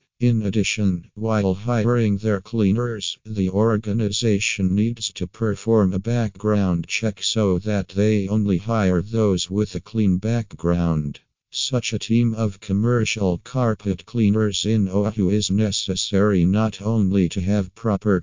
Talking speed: 130 wpm